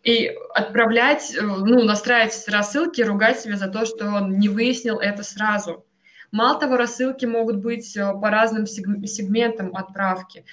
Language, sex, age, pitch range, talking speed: Russian, female, 20-39, 200-235 Hz, 135 wpm